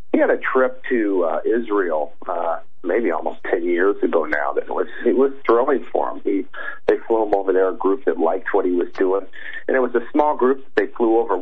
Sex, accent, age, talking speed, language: male, American, 40-59, 240 wpm, English